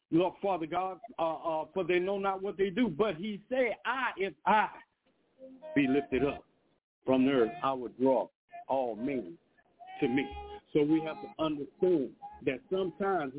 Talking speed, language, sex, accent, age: 170 wpm, English, male, American, 60-79